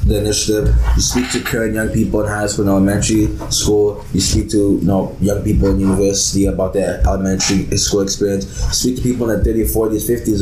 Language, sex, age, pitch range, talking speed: English, male, 10-29, 95-115 Hz, 205 wpm